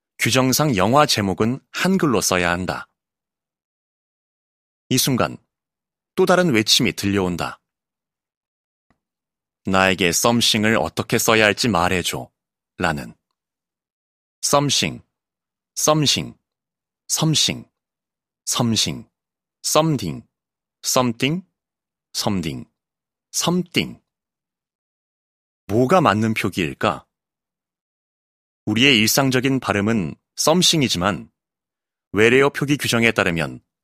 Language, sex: Korean, male